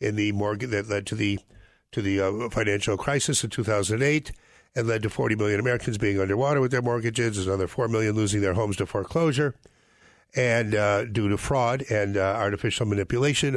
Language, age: English, 60-79